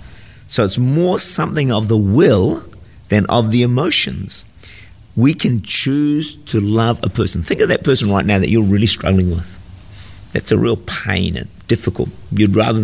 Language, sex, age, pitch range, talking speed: English, male, 50-69, 95-115 Hz, 175 wpm